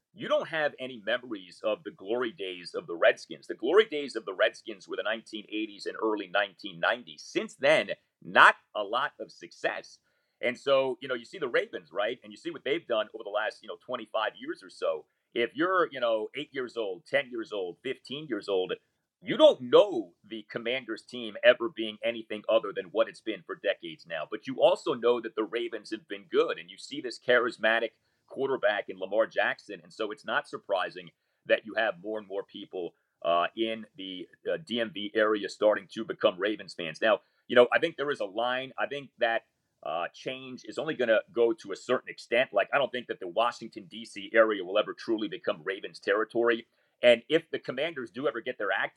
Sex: male